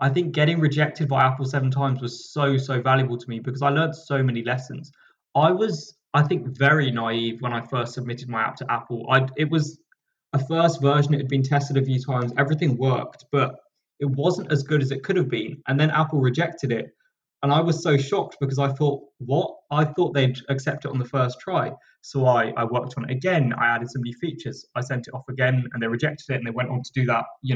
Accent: British